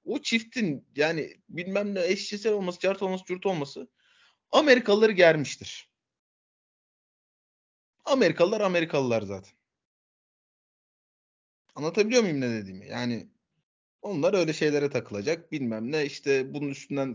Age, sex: 30-49, male